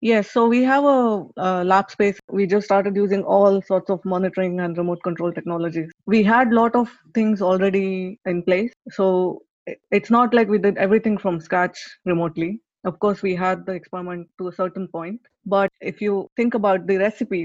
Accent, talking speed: Indian, 195 wpm